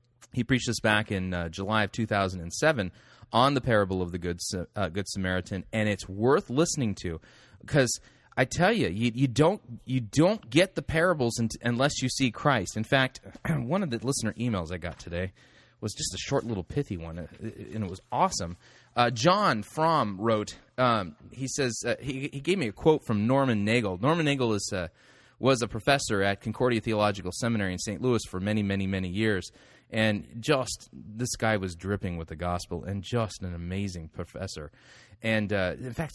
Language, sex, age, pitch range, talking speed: English, male, 30-49, 100-130 Hz, 195 wpm